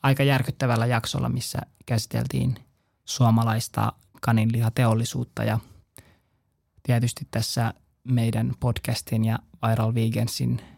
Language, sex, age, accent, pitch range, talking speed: Finnish, male, 20-39, native, 110-125 Hz, 85 wpm